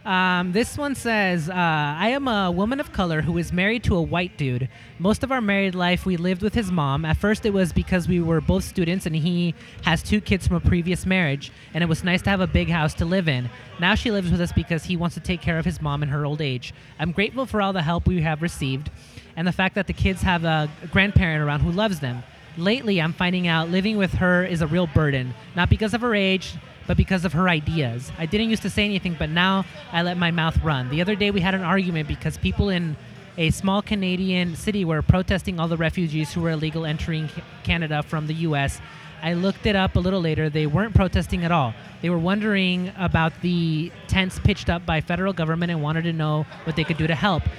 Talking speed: 240 wpm